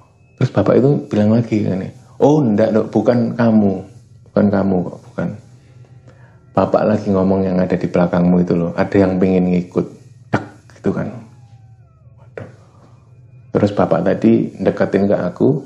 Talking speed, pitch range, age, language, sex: 140 wpm, 95-115 Hz, 30-49, Indonesian, male